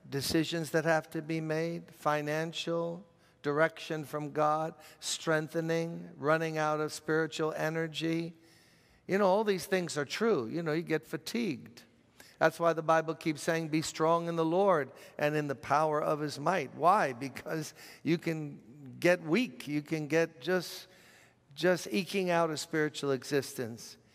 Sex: male